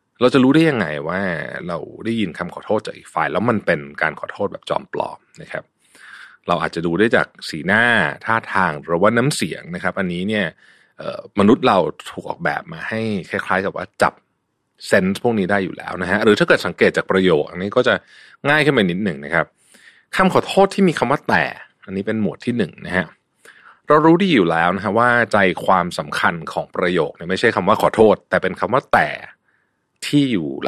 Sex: male